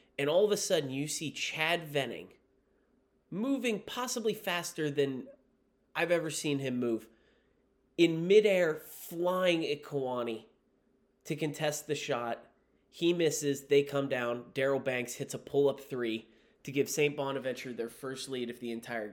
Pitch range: 130-165 Hz